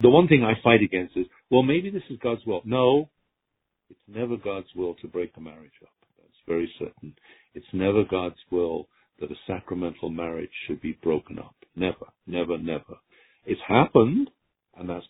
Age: 60-79